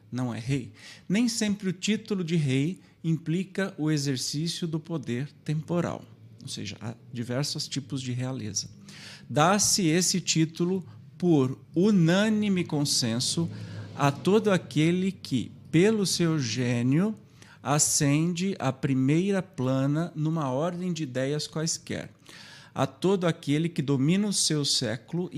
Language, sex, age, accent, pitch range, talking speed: Portuguese, male, 50-69, Brazilian, 130-170 Hz, 125 wpm